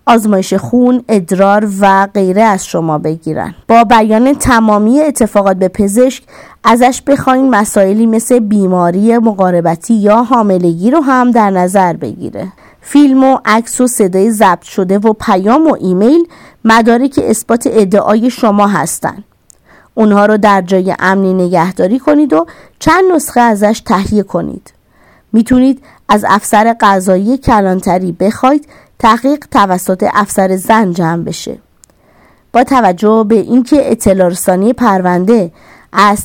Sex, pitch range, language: female, 190-245 Hz, Persian